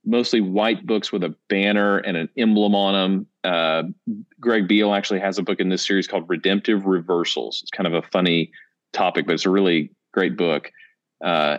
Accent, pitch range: American, 90-115 Hz